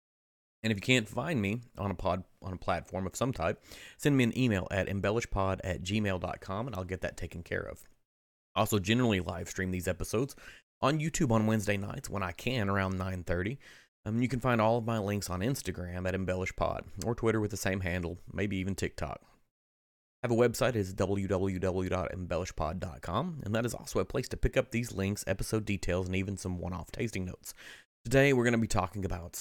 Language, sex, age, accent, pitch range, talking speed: English, male, 30-49, American, 90-110 Hz, 200 wpm